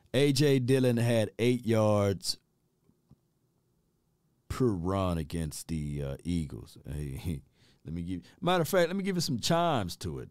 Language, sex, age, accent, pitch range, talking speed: English, male, 40-59, American, 95-160 Hz, 150 wpm